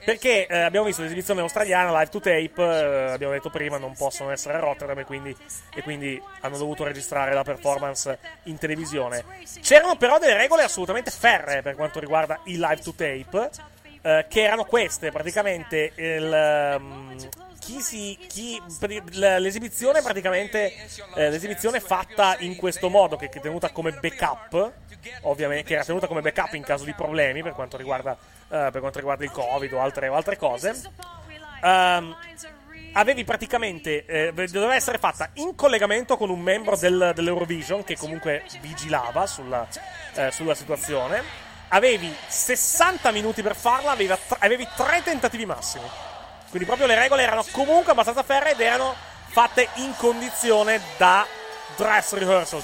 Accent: native